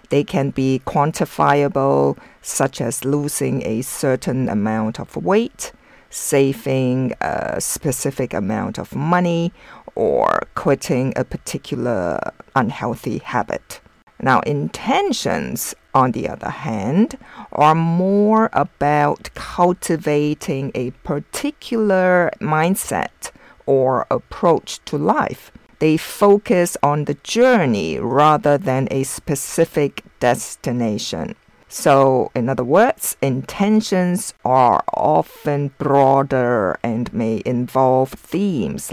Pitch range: 135-180 Hz